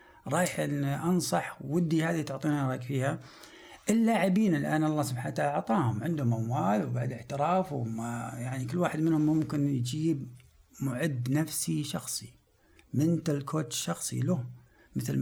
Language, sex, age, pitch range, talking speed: Arabic, male, 60-79, 120-155 Hz, 125 wpm